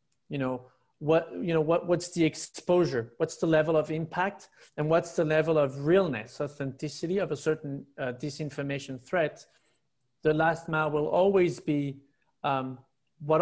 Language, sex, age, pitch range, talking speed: English, male, 30-49, 140-165 Hz, 155 wpm